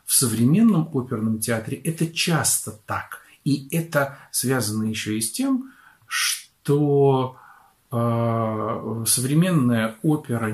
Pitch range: 110-140 Hz